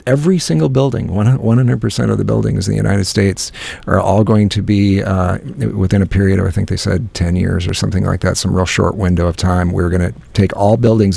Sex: male